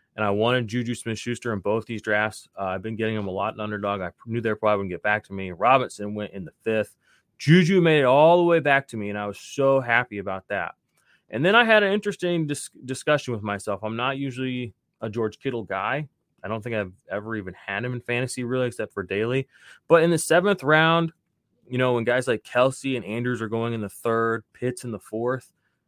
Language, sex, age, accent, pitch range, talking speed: English, male, 20-39, American, 105-125 Hz, 235 wpm